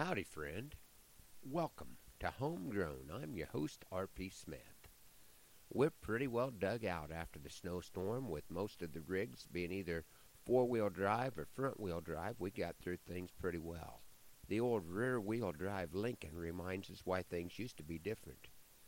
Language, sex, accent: English, male, American